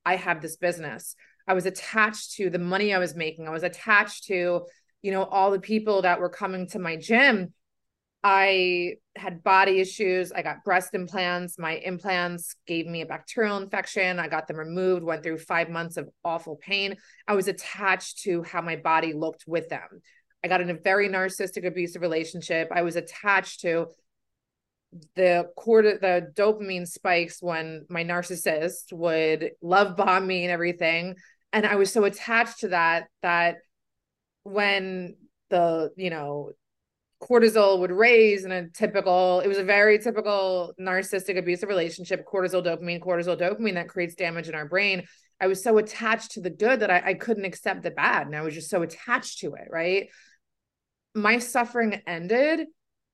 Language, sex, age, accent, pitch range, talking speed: English, female, 30-49, American, 170-200 Hz, 170 wpm